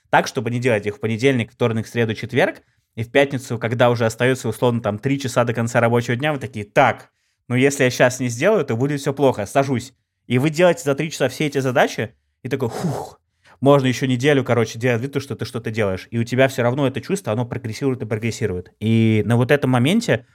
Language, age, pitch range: Russian, 20-39, 110-135 Hz